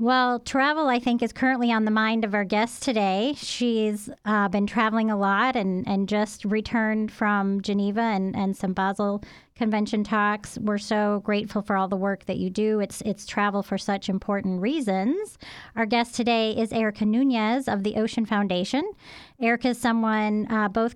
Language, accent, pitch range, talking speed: English, American, 195-225 Hz, 180 wpm